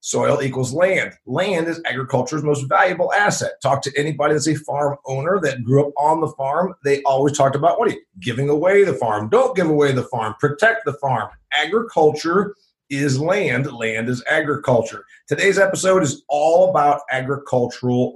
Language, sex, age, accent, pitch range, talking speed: English, male, 50-69, American, 140-190 Hz, 175 wpm